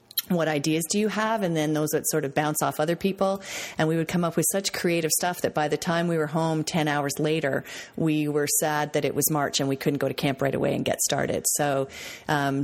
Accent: American